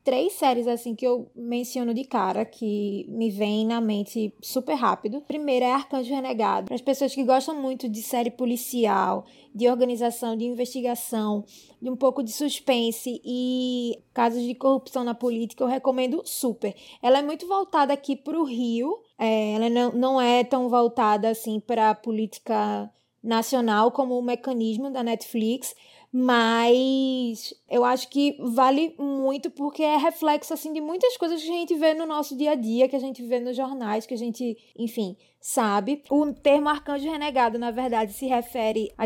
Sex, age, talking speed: female, 20-39, 170 wpm